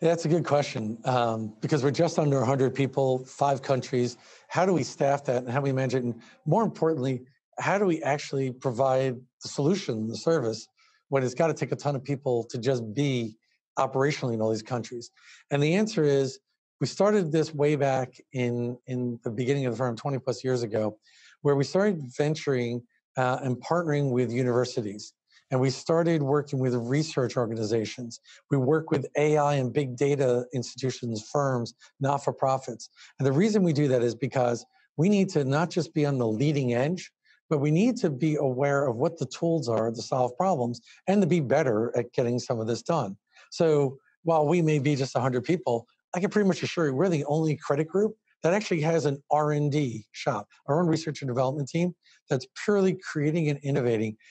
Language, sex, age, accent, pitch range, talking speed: English, male, 50-69, American, 125-155 Hz, 195 wpm